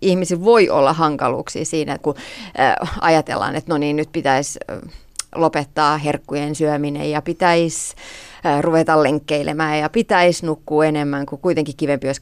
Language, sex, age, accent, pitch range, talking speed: Finnish, female, 30-49, native, 150-195 Hz, 130 wpm